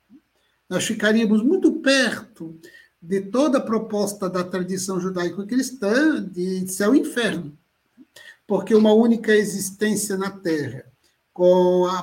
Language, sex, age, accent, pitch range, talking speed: Portuguese, male, 60-79, Brazilian, 175-245 Hz, 115 wpm